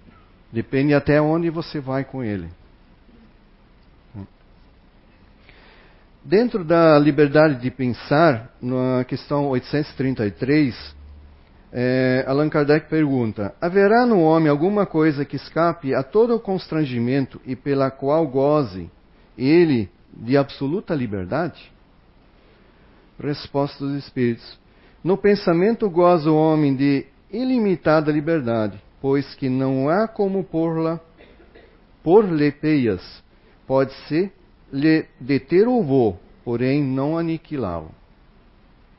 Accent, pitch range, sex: Brazilian, 120-155 Hz, male